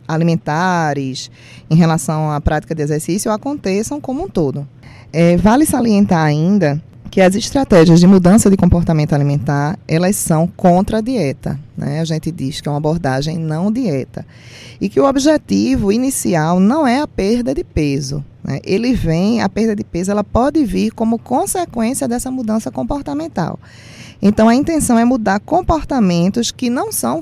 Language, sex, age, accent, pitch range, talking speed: Portuguese, female, 20-39, Brazilian, 155-215 Hz, 160 wpm